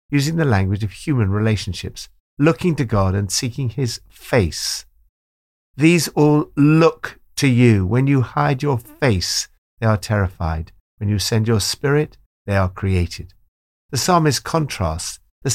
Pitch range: 90-135 Hz